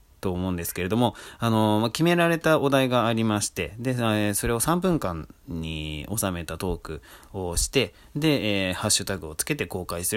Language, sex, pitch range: Japanese, male, 85-115 Hz